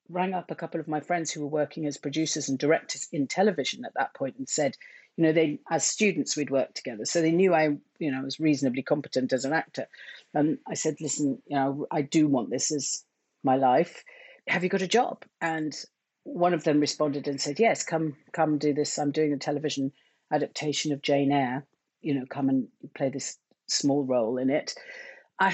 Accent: British